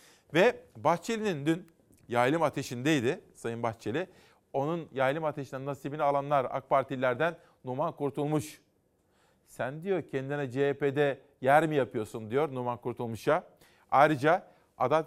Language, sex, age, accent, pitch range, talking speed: Turkish, male, 50-69, native, 135-165 Hz, 110 wpm